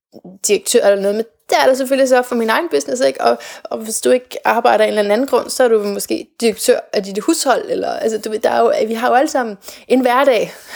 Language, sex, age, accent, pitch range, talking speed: Danish, female, 20-39, native, 200-250 Hz, 260 wpm